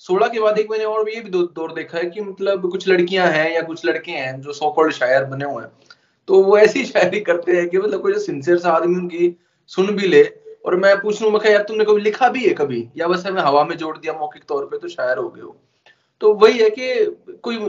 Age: 20-39